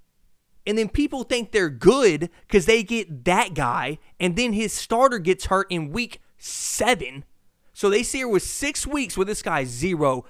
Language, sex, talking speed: English, male, 180 wpm